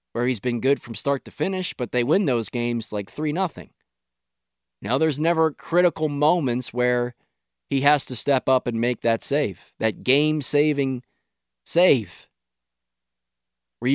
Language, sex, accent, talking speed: English, male, American, 150 wpm